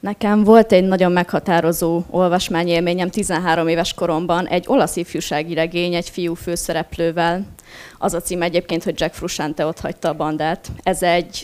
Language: Hungarian